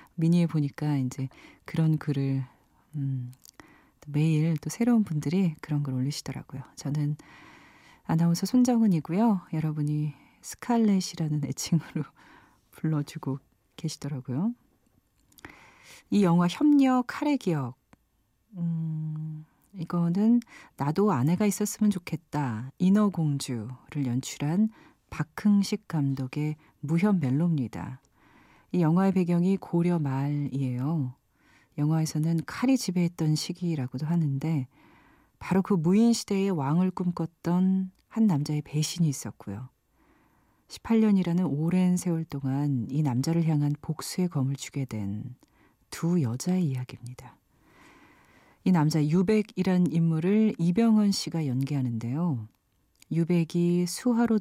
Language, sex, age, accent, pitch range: Korean, female, 40-59, native, 140-185 Hz